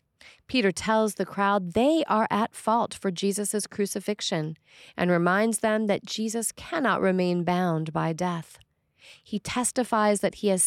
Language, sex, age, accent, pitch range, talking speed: English, female, 30-49, American, 175-225 Hz, 145 wpm